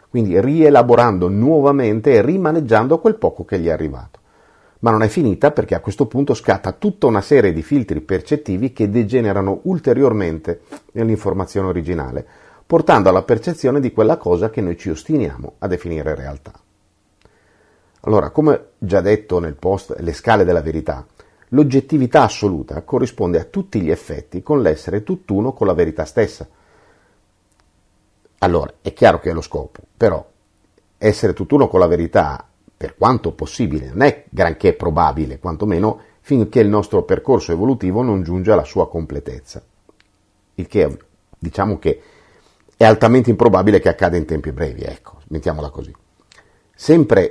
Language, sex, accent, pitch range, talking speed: Italian, male, native, 90-140 Hz, 145 wpm